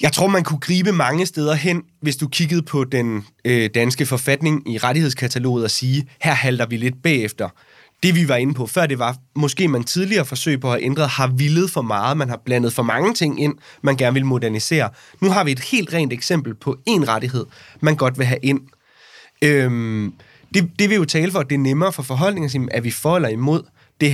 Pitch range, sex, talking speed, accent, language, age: 125-155 Hz, male, 215 wpm, native, Danish, 20-39